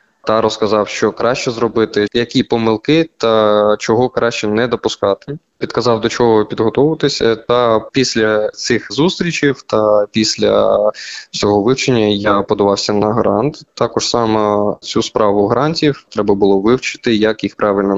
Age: 20-39